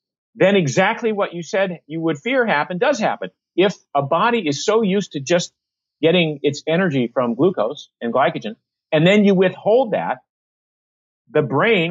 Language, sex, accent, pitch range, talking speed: English, male, American, 145-195 Hz, 165 wpm